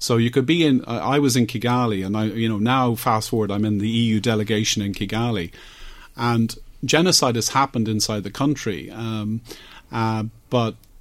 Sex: male